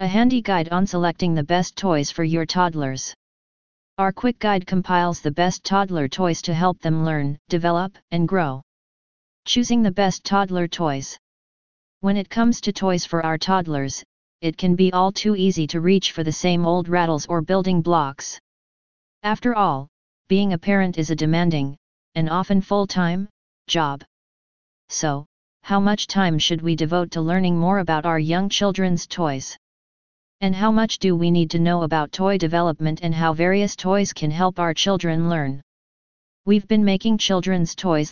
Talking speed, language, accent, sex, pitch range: 170 wpm, English, American, female, 160-190 Hz